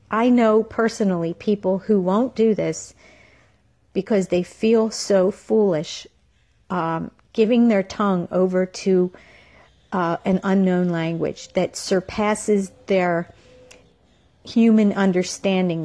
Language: English